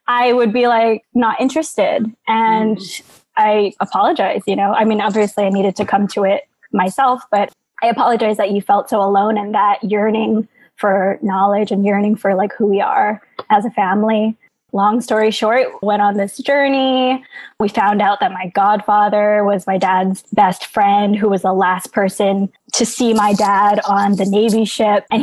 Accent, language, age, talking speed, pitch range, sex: American, English, 20-39, 180 wpm, 195-225 Hz, female